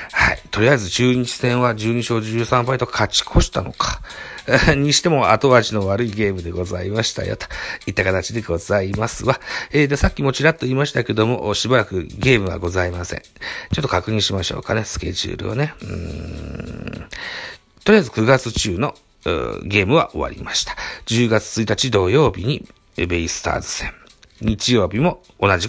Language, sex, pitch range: Japanese, male, 95-130 Hz